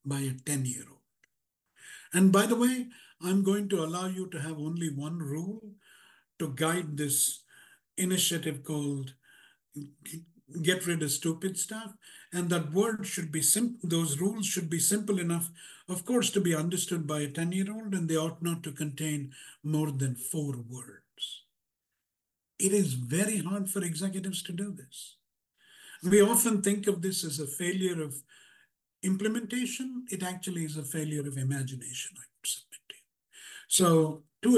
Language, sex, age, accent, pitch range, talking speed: English, male, 60-79, Indian, 155-200 Hz, 165 wpm